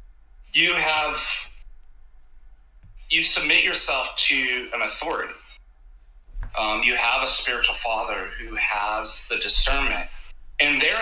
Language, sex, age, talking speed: English, male, 30-49, 110 wpm